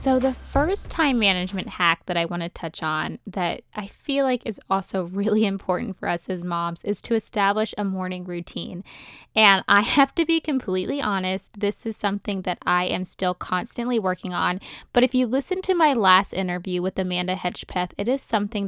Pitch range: 185-230 Hz